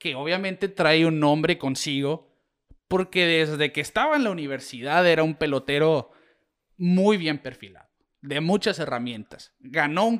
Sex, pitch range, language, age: male, 150-205 Hz, Spanish, 30-49